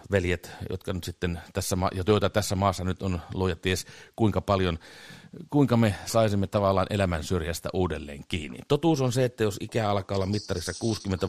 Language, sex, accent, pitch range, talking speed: Finnish, male, native, 90-110 Hz, 175 wpm